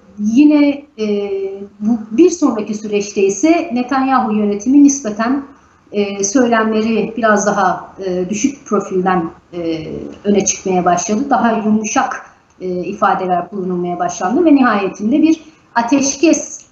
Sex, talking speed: female, 110 wpm